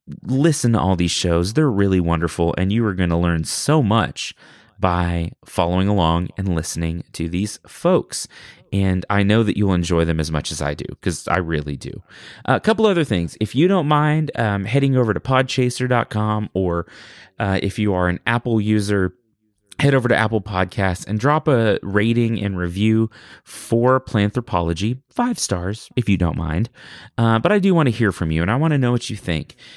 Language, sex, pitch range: English, male, 90-115 Hz